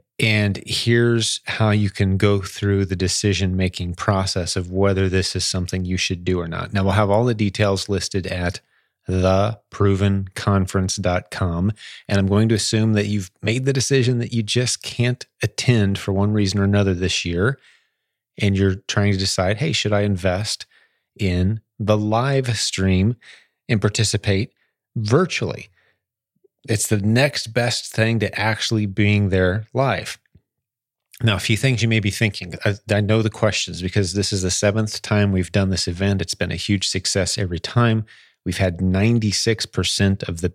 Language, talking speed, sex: English, 165 wpm, male